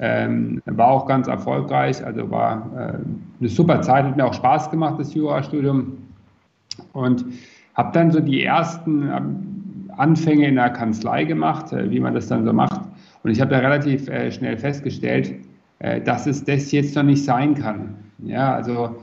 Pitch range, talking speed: 120-150 Hz, 160 wpm